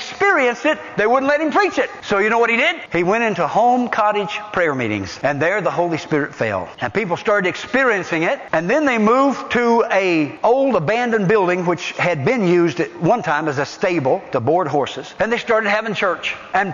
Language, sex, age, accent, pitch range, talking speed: English, male, 60-79, American, 140-235 Hz, 215 wpm